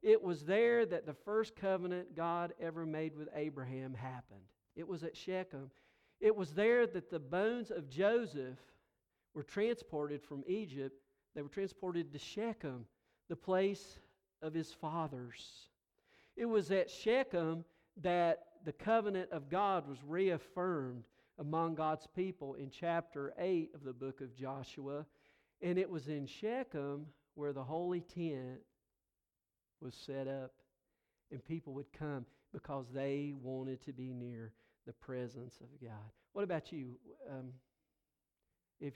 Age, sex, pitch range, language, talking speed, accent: 50-69, male, 135-175 Hz, English, 140 wpm, American